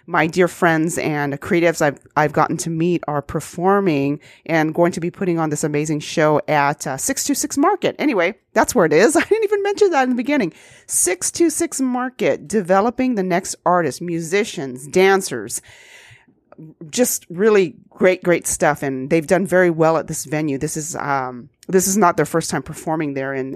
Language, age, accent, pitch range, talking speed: English, 40-59, American, 155-205 Hz, 190 wpm